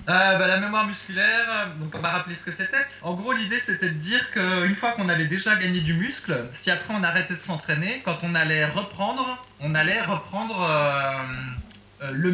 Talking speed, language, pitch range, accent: 200 wpm, French, 160-210 Hz, French